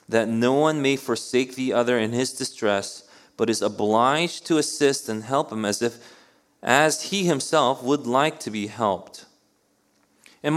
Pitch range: 110-160 Hz